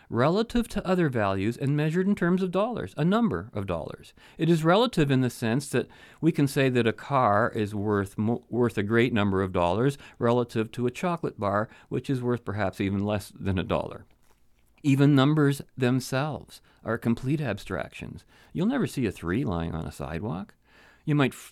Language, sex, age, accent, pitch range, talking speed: English, male, 40-59, American, 115-165 Hz, 190 wpm